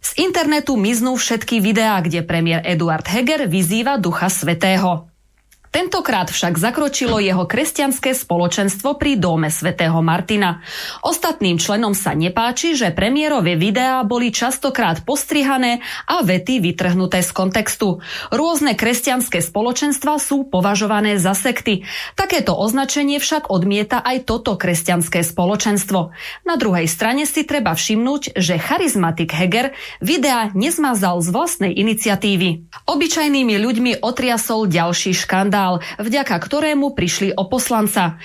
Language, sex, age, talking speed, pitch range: Slovak, female, 20-39, 120 wpm, 180-260 Hz